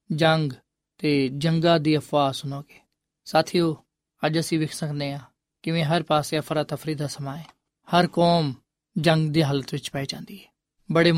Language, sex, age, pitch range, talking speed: Punjabi, male, 20-39, 150-175 Hz, 150 wpm